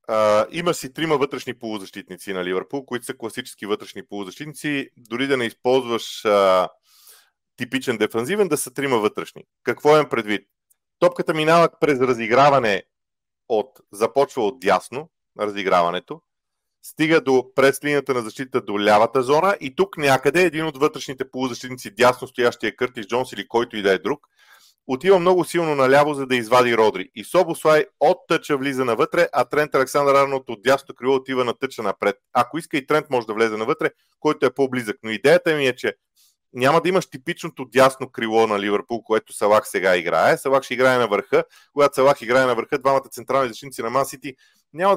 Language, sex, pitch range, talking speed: Bulgarian, male, 115-150 Hz, 175 wpm